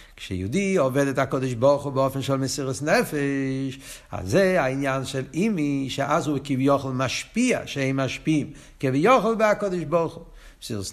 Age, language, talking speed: 60-79, Hebrew, 145 wpm